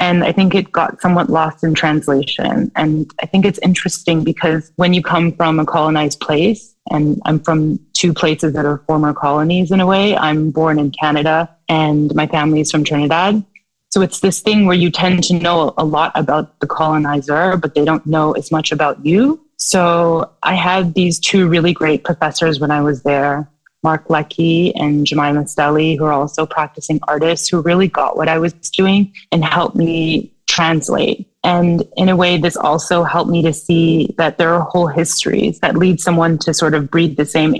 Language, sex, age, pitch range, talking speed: English, female, 20-39, 155-180 Hz, 195 wpm